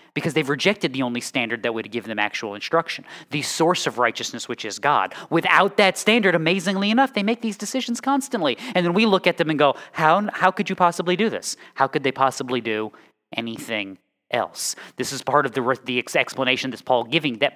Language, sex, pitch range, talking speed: English, male, 130-185 Hz, 205 wpm